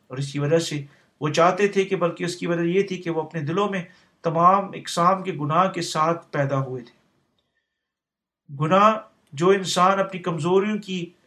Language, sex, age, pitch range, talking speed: Urdu, male, 50-69, 150-180 Hz, 185 wpm